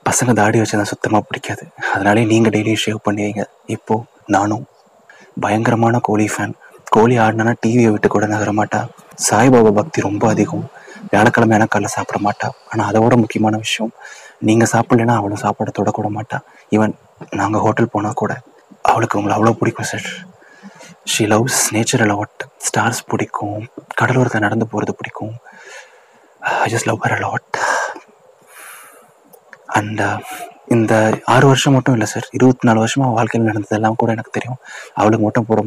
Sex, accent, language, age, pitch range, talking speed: male, native, Tamil, 30-49, 105-120 Hz, 135 wpm